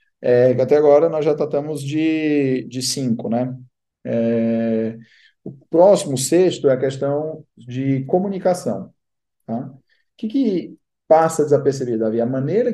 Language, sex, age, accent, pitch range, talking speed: Portuguese, male, 40-59, Brazilian, 130-170 Hz, 130 wpm